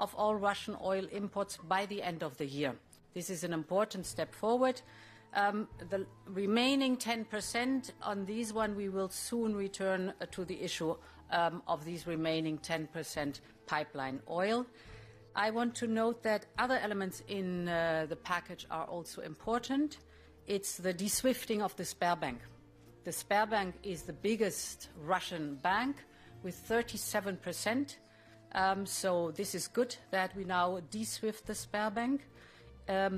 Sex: female